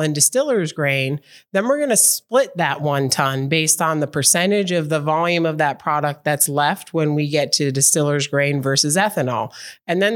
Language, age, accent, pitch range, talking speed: English, 30-49, American, 140-170 Hz, 195 wpm